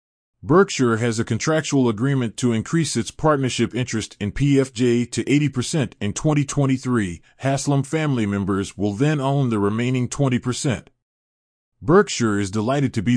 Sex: male